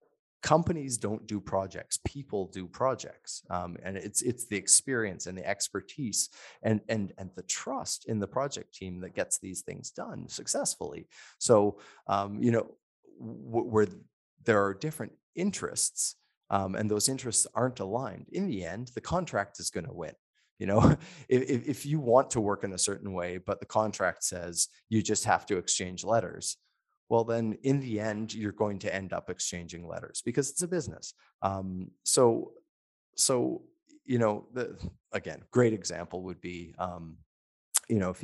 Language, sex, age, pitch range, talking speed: English, male, 30-49, 90-115 Hz, 170 wpm